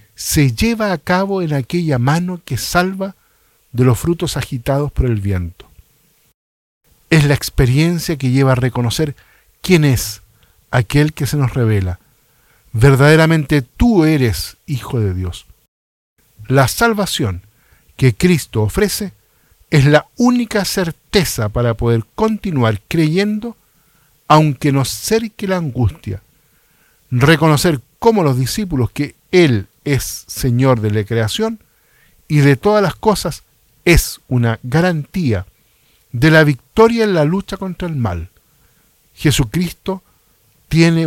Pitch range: 115-170 Hz